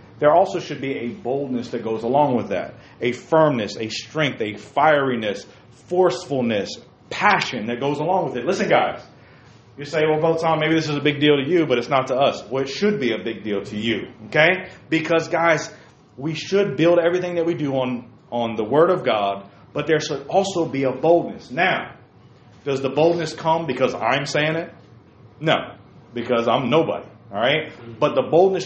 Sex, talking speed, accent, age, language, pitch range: male, 195 wpm, American, 40-59, English, 125-165 Hz